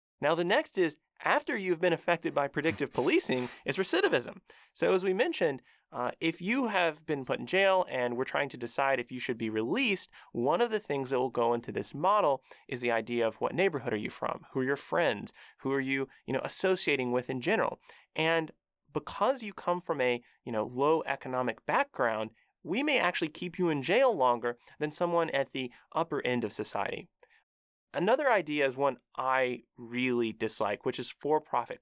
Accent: American